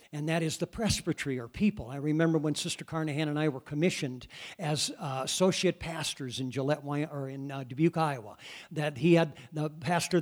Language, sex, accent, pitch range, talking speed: English, male, American, 145-180 Hz, 190 wpm